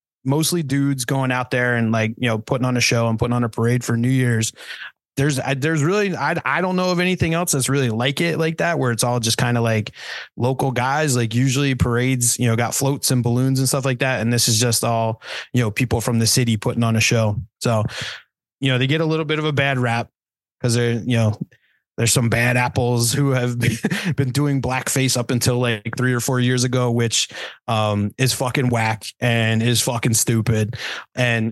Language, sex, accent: English, male, American